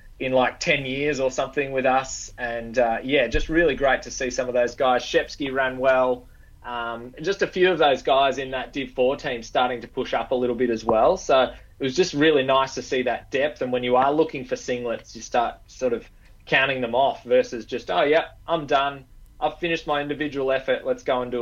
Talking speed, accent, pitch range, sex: 235 wpm, Australian, 120-150 Hz, male